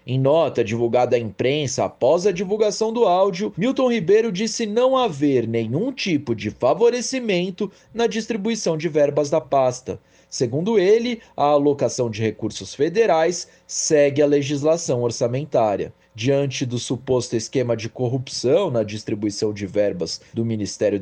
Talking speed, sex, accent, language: 135 wpm, male, Brazilian, Portuguese